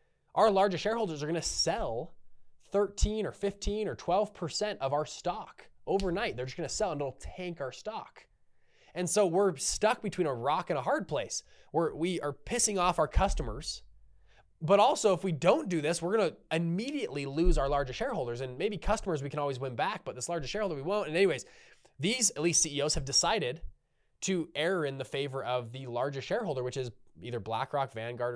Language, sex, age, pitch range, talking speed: English, male, 20-39, 130-170 Hz, 200 wpm